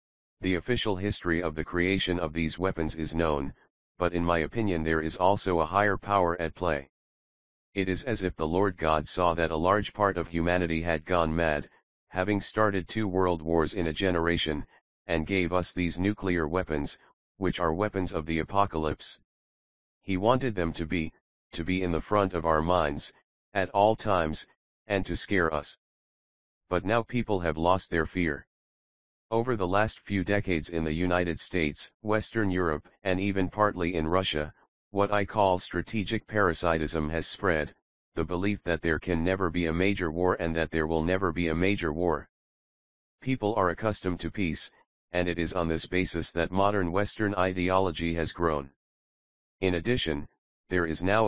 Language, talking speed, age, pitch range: English, 175 wpm, 40-59, 80-95 Hz